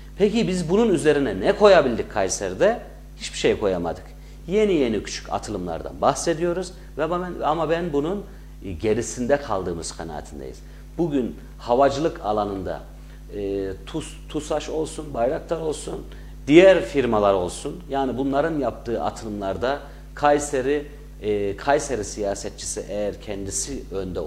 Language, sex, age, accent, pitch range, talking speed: Turkish, male, 50-69, native, 100-145 Hz, 115 wpm